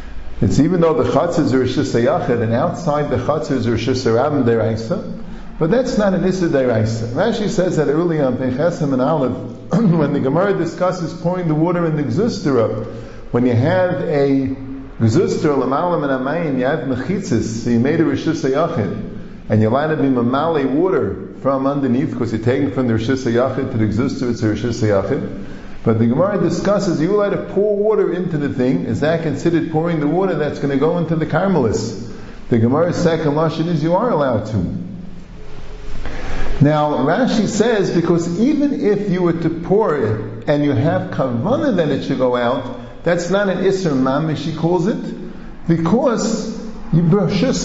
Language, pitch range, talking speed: English, 125-185 Hz, 170 wpm